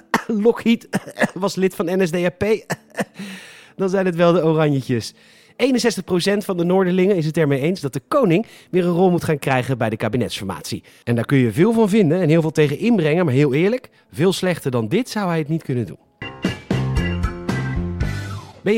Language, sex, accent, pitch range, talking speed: Dutch, male, Dutch, 130-195 Hz, 180 wpm